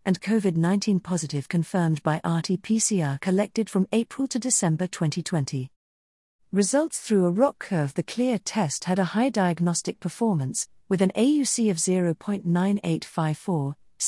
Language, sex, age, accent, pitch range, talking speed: English, female, 50-69, British, 160-215 Hz, 130 wpm